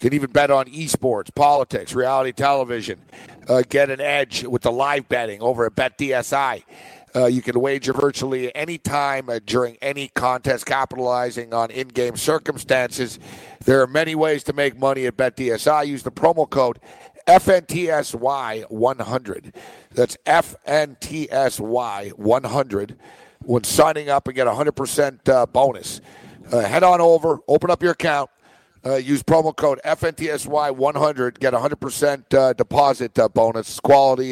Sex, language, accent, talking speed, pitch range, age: male, English, American, 135 wpm, 125-150 Hz, 50-69